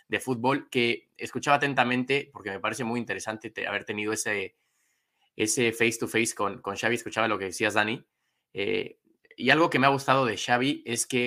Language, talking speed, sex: Spanish, 195 wpm, male